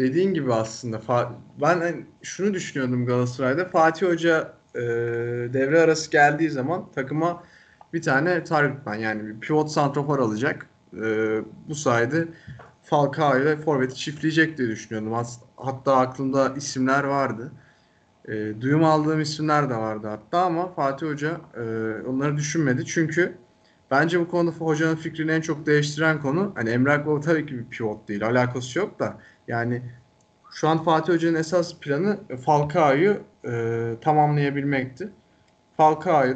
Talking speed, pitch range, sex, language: 135 wpm, 125-160 Hz, male, Turkish